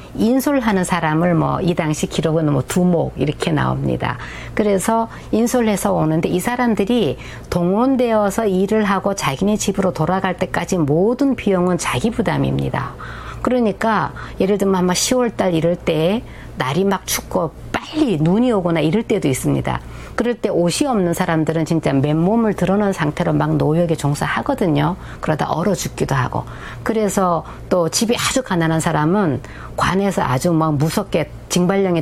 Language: Korean